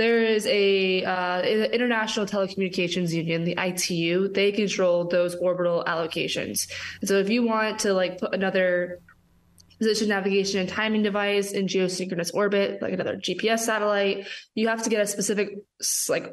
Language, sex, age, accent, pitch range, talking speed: English, female, 20-39, American, 180-205 Hz, 155 wpm